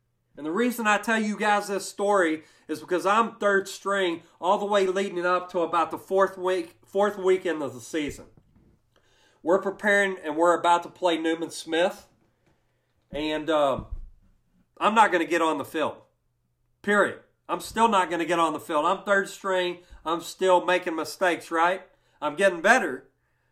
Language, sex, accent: English, male, American